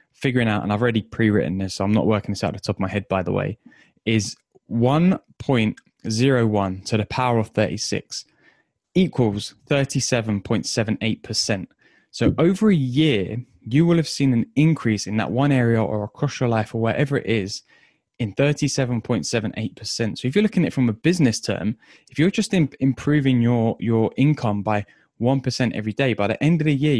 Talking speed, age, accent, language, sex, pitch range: 180 wpm, 10-29, British, English, male, 110-135 Hz